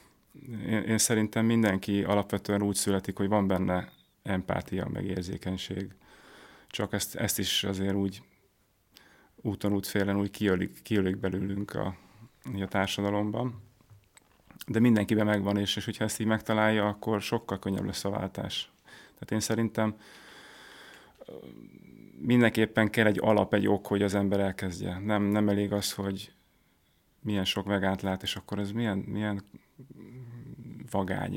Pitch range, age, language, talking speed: 100-110 Hz, 30-49, Hungarian, 135 wpm